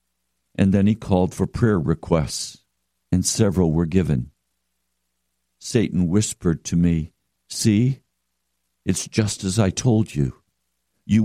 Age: 60-79